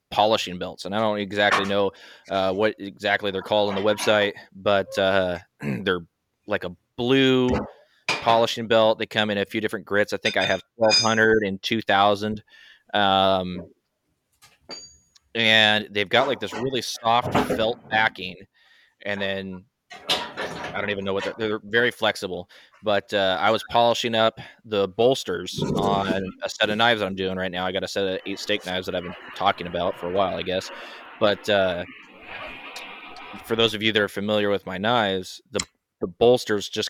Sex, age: male, 20-39